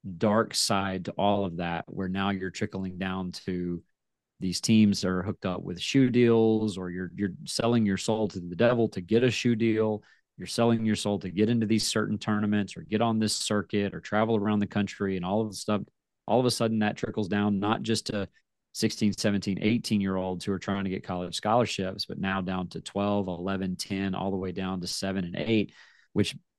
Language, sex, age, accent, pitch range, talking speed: English, male, 30-49, American, 95-110 Hz, 220 wpm